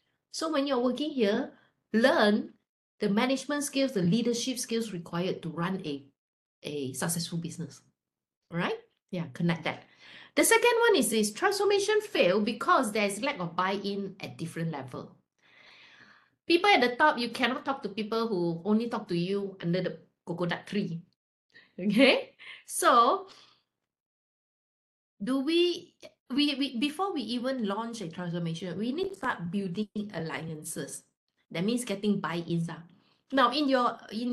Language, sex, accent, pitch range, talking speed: English, female, Malaysian, 170-250 Hz, 145 wpm